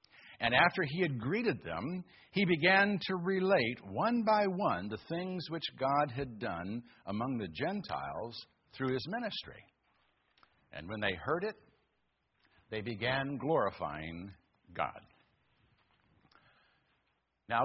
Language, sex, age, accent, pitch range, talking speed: English, male, 60-79, American, 140-205 Hz, 120 wpm